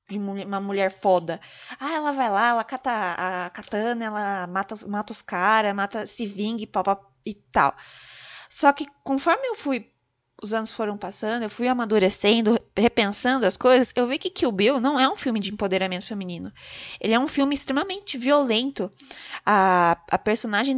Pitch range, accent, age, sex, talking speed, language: 190-265 Hz, Brazilian, 20-39, female, 170 wpm, Portuguese